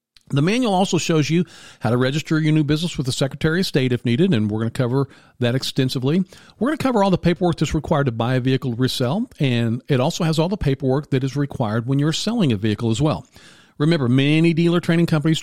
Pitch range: 130-170 Hz